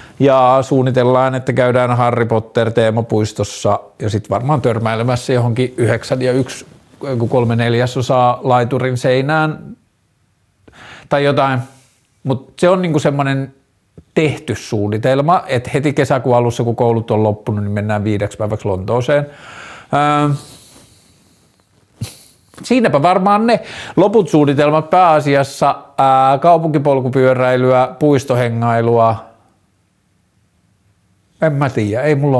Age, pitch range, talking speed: 50-69, 110-140 Hz, 95 wpm